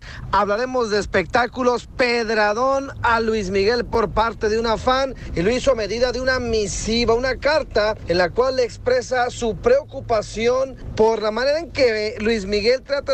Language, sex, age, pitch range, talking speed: Spanish, male, 40-59, 195-245 Hz, 170 wpm